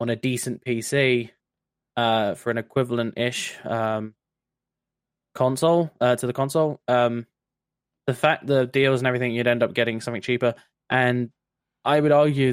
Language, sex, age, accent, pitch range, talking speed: English, male, 10-29, British, 120-145 Hz, 150 wpm